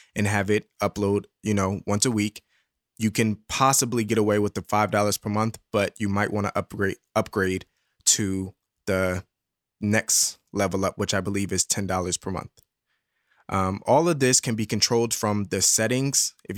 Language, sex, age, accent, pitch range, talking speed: English, male, 20-39, American, 100-120 Hz, 175 wpm